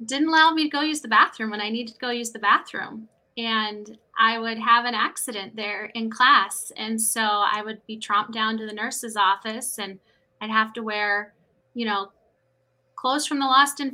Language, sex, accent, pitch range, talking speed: English, female, American, 205-245 Hz, 205 wpm